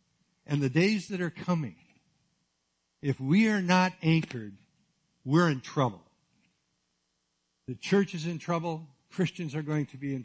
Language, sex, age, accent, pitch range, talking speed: English, male, 60-79, American, 125-175 Hz, 145 wpm